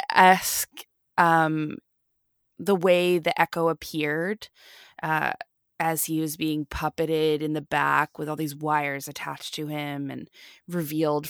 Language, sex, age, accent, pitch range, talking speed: English, female, 20-39, American, 155-170 Hz, 125 wpm